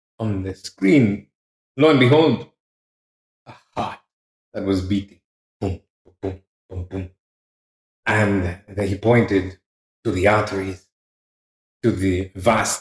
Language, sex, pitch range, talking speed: English, male, 95-115 Hz, 115 wpm